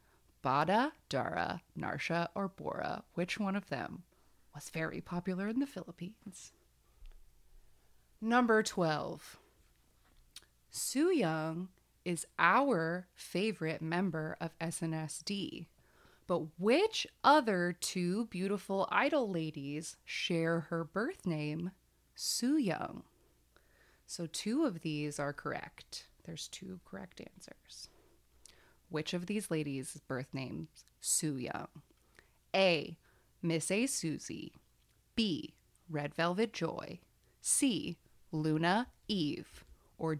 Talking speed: 100 wpm